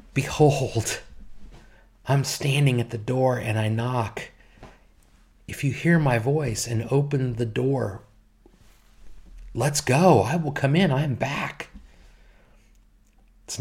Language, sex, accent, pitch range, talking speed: English, male, American, 95-125 Hz, 125 wpm